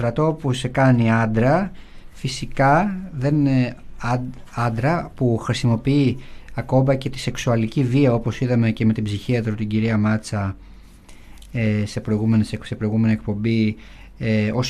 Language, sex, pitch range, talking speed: Greek, male, 110-140 Hz, 120 wpm